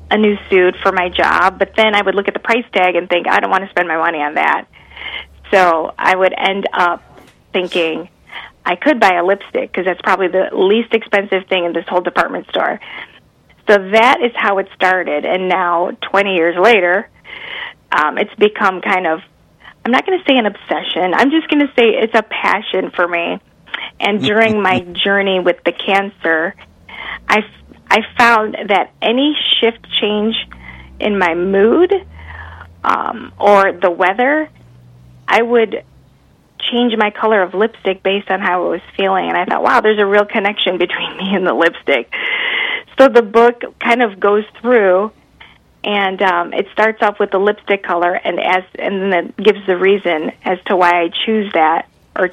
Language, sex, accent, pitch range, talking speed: English, female, American, 180-220 Hz, 185 wpm